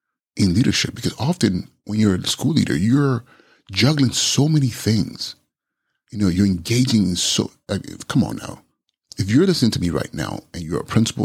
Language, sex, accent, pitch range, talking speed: English, male, American, 95-120 Hz, 185 wpm